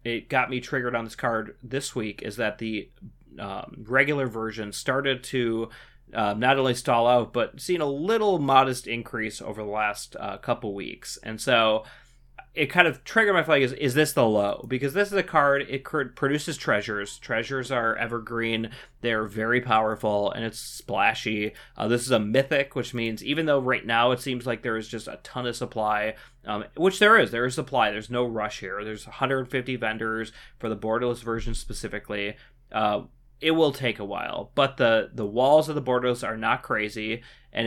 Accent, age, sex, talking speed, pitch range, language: American, 30-49, male, 195 wpm, 110-130 Hz, English